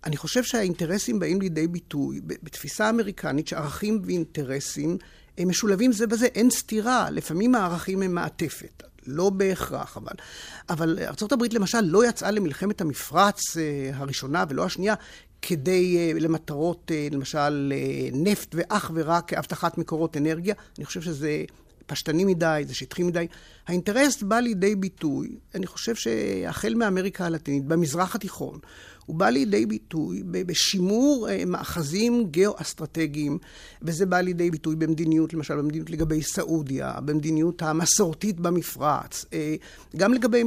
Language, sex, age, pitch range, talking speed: Hebrew, male, 50-69, 155-200 Hz, 125 wpm